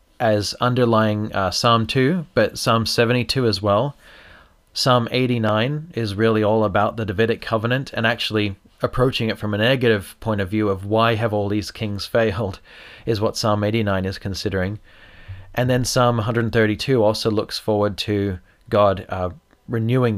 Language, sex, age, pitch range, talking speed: English, male, 30-49, 105-125 Hz, 160 wpm